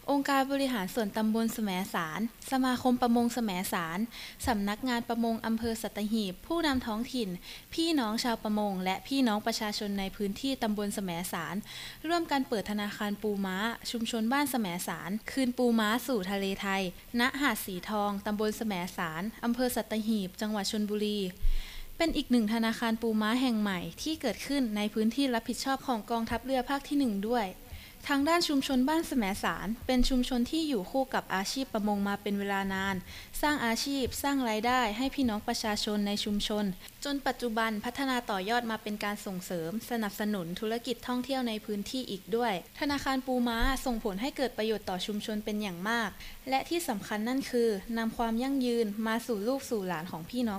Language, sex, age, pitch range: Thai, female, 20-39, 205-255 Hz